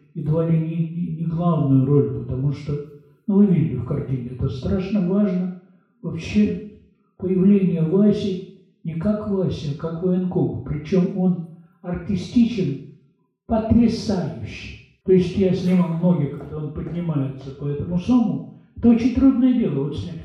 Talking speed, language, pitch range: 140 wpm, Russian, 155-205 Hz